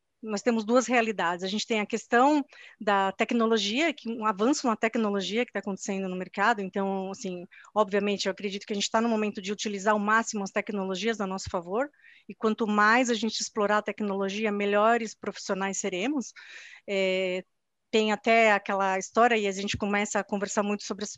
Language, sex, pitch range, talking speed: Portuguese, female, 205-255 Hz, 185 wpm